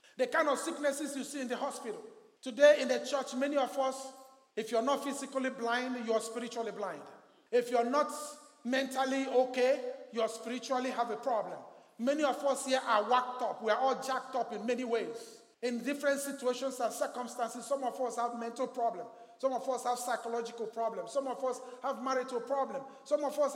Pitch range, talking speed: 240-290 Hz, 190 wpm